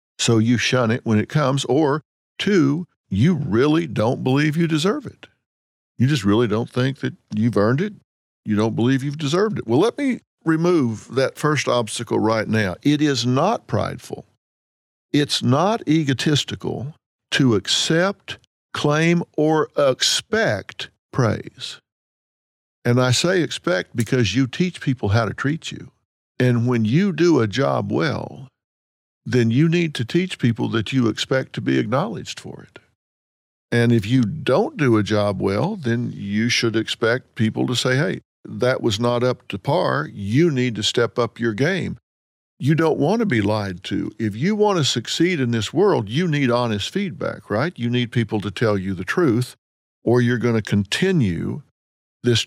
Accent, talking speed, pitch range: American, 170 wpm, 110-150 Hz